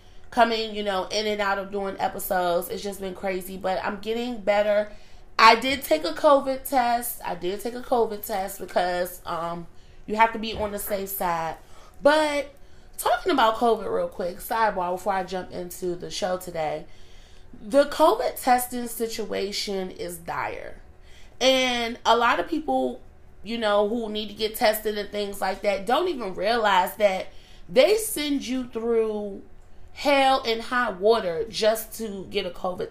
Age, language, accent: 30-49, English, American